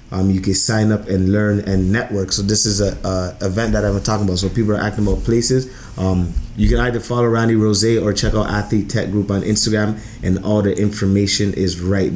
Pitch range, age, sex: 100-115 Hz, 20-39, male